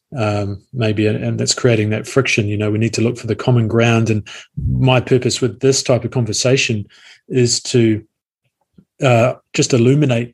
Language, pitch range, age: English, 115-130 Hz, 20-39